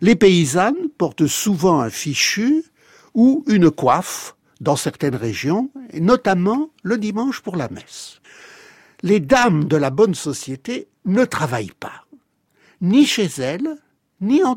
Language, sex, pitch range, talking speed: French, male, 150-230 Hz, 130 wpm